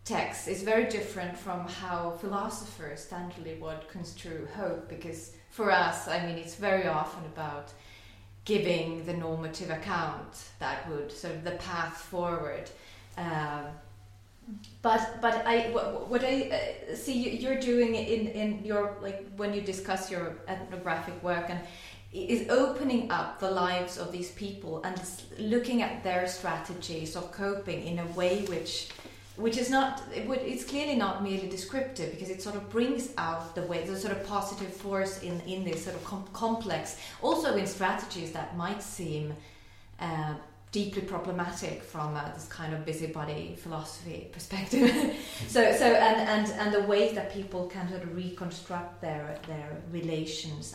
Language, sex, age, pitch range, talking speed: English, female, 30-49, 160-200 Hz, 160 wpm